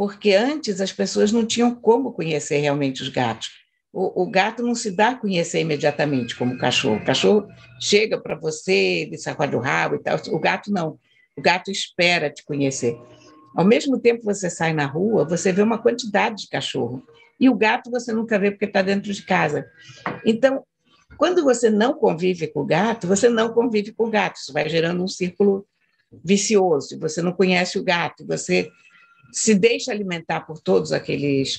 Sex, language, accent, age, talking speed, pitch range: female, Portuguese, Brazilian, 60-79, 185 wpm, 155-215 Hz